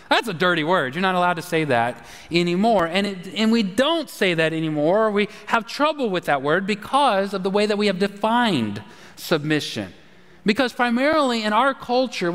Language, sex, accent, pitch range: English, male, American, 165-230 Hz